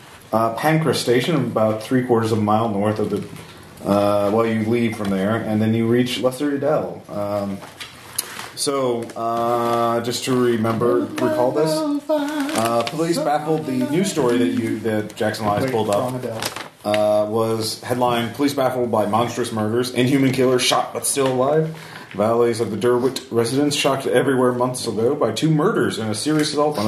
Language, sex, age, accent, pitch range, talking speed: English, male, 30-49, American, 105-130 Hz, 170 wpm